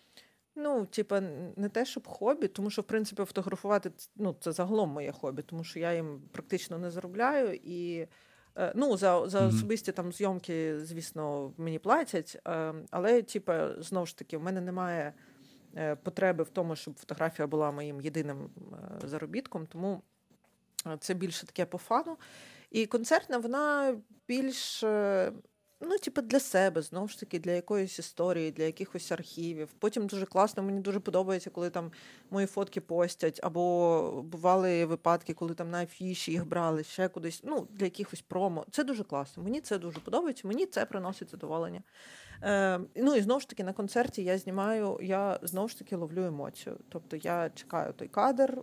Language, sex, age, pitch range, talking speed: Ukrainian, female, 40-59, 170-210 Hz, 160 wpm